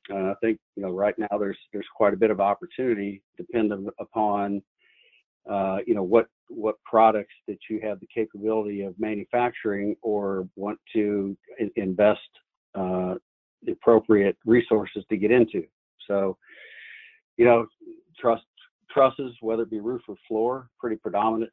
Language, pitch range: English, 100-115 Hz